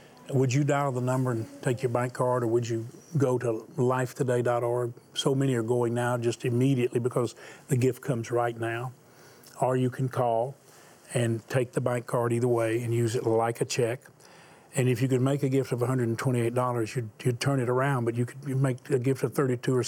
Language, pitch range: English, 120-140 Hz